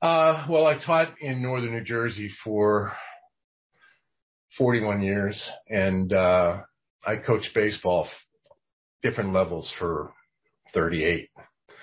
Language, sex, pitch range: English, male, 90-115 Hz